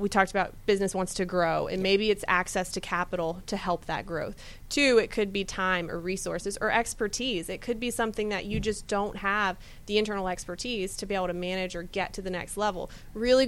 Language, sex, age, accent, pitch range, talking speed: English, female, 20-39, American, 185-215 Hz, 225 wpm